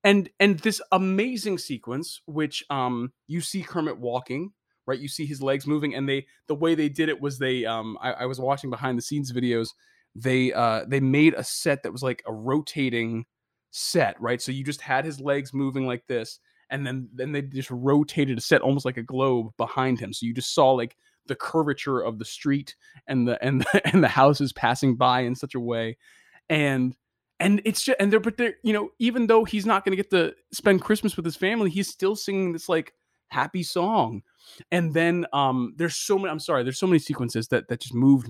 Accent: American